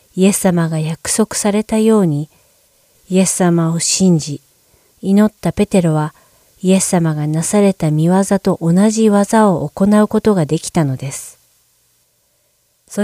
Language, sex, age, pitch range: Japanese, female, 40-59, 150-195 Hz